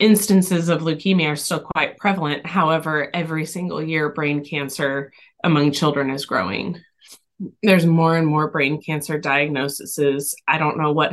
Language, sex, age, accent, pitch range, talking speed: English, female, 20-39, American, 145-165 Hz, 150 wpm